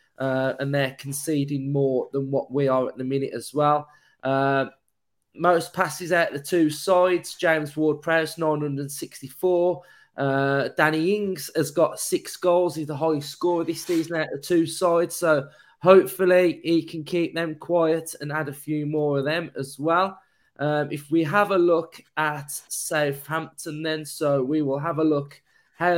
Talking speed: 170 wpm